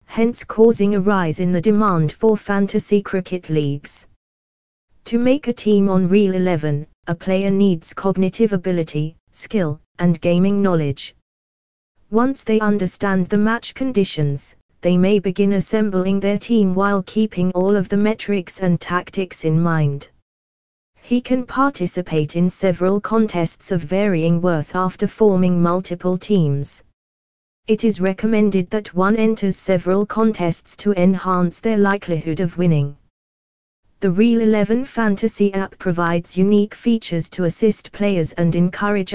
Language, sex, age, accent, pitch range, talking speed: English, female, 20-39, British, 165-205 Hz, 135 wpm